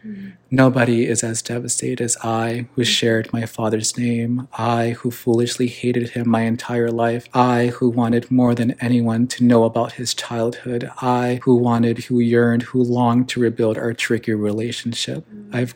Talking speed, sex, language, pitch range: 165 wpm, male, English, 115-125 Hz